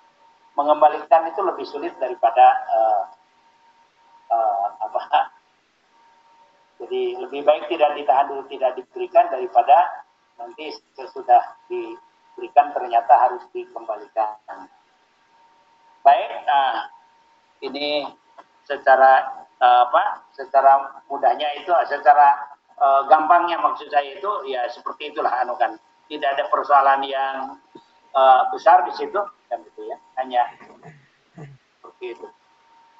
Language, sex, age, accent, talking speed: Indonesian, male, 50-69, native, 95 wpm